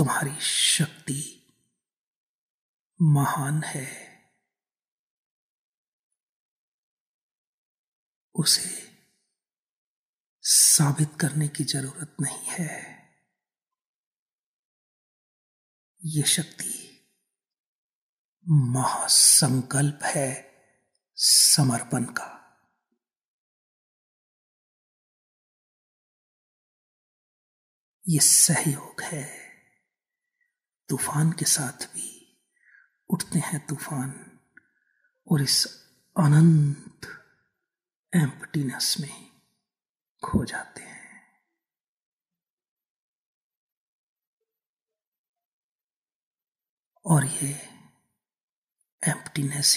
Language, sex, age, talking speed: Hindi, male, 50-69, 45 wpm